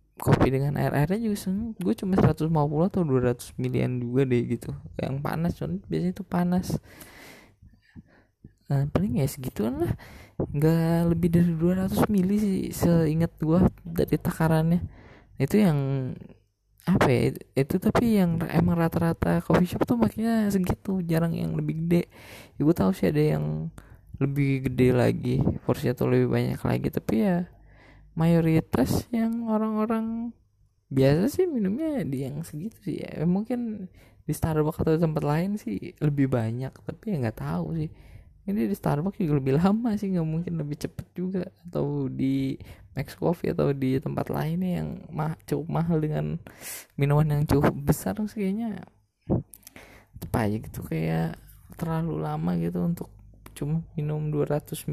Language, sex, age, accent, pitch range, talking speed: Indonesian, male, 20-39, native, 130-180 Hz, 140 wpm